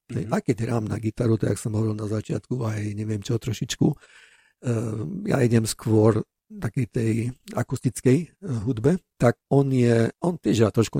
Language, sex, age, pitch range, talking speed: Slovak, male, 50-69, 110-135 Hz, 155 wpm